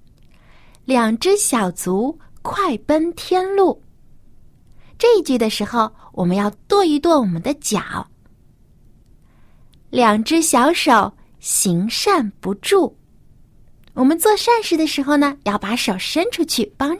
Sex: female